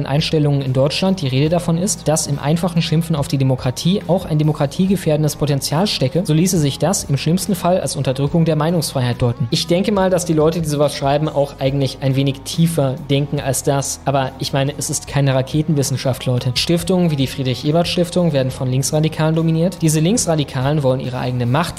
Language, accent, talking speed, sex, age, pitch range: German, German, 195 wpm, male, 20-39, 140-175 Hz